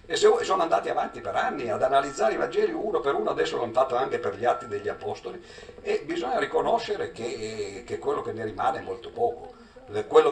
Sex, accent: male, native